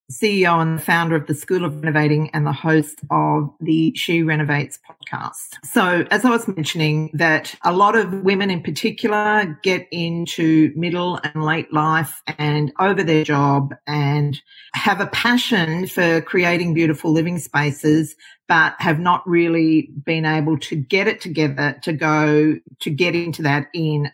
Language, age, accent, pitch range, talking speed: English, 40-59, Australian, 150-180 Hz, 160 wpm